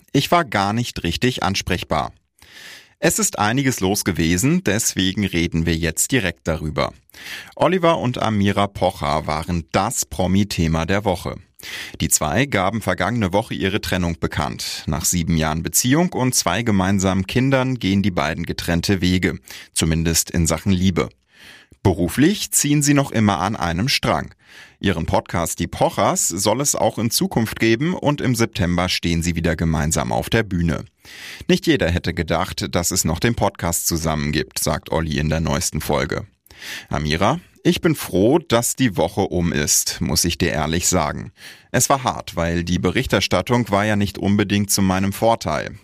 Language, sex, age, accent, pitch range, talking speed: German, male, 30-49, German, 85-115 Hz, 160 wpm